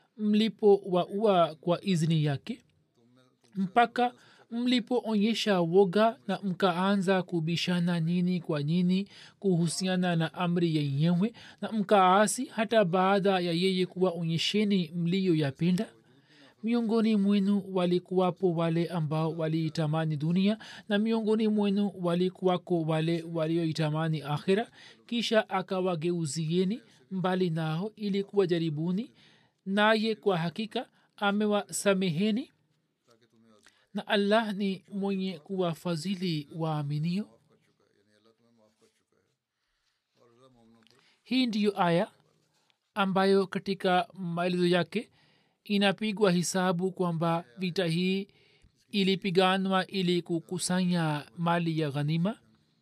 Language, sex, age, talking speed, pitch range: Swahili, male, 40-59, 90 wpm, 170-205 Hz